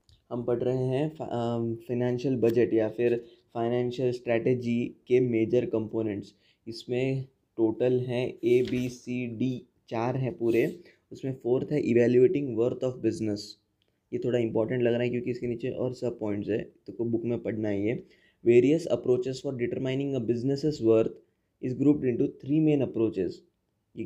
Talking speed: 160 wpm